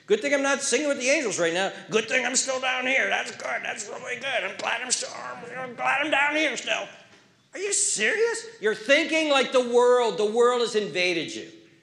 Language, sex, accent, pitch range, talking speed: English, male, American, 135-225 Hz, 225 wpm